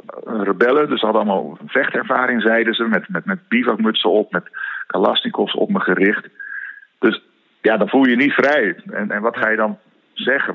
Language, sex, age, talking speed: Dutch, male, 50-69, 190 wpm